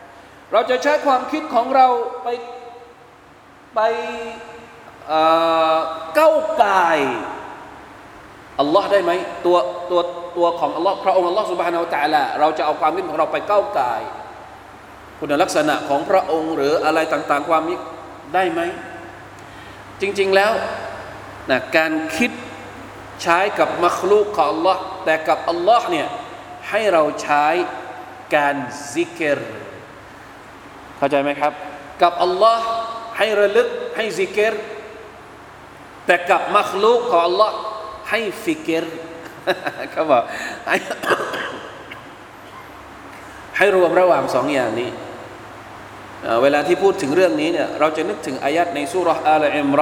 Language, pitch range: Thai, 160-225 Hz